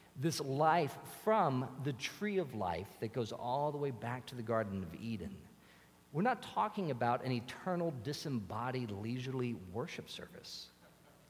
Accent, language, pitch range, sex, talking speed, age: American, English, 110-150 Hz, male, 150 wpm, 50-69